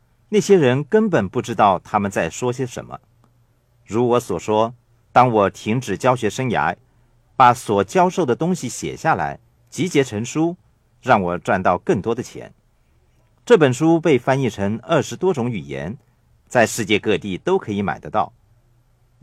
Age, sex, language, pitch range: 50-69, male, Chinese, 115-135 Hz